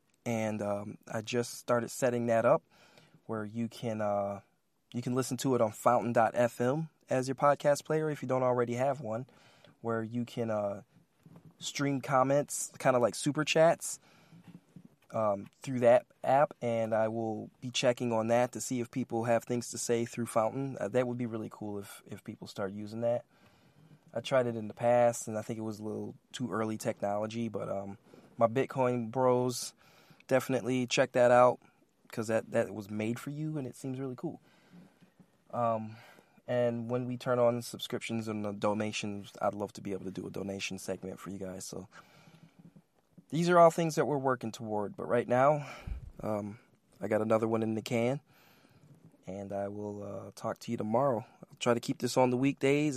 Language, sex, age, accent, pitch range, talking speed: English, male, 20-39, American, 110-130 Hz, 190 wpm